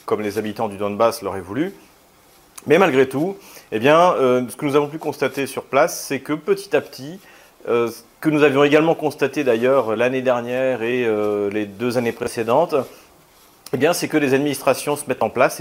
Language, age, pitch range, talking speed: French, 40-59, 115-145 Hz, 200 wpm